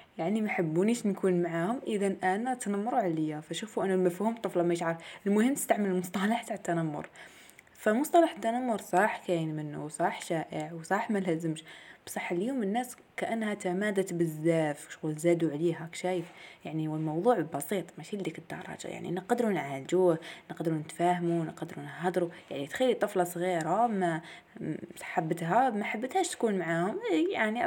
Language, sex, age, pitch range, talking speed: Arabic, female, 20-39, 170-225 Hz, 135 wpm